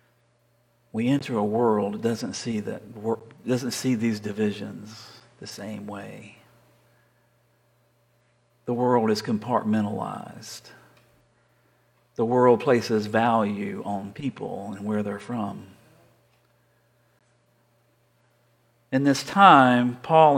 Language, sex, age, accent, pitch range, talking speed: English, male, 50-69, American, 115-155 Hz, 95 wpm